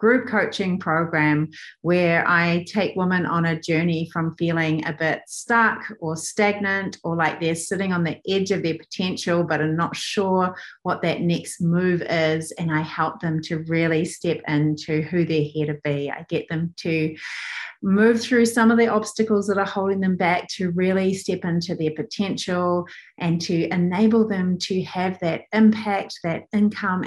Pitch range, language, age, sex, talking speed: 160-195 Hz, English, 30-49, female, 175 wpm